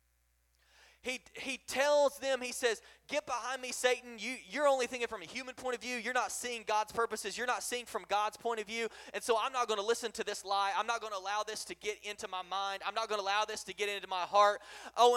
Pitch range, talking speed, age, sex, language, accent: 180-240 Hz, 255 wpm, 20-39, male, English, American